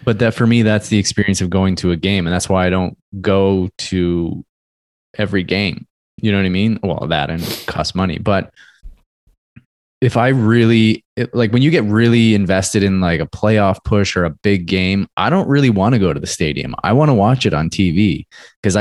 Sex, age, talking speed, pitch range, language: male, 20-39, 215 wpm, 90-110 Hz, English